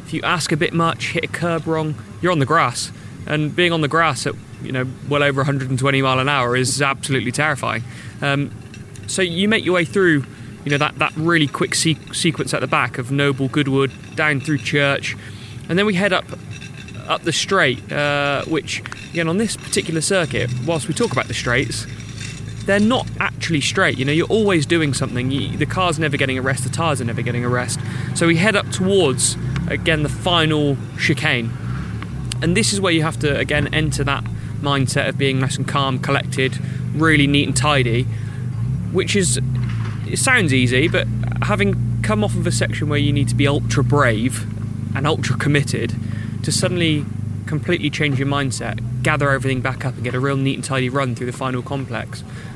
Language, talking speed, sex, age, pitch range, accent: English, 200 wpm, male, 20-39, 120-150 Hz, British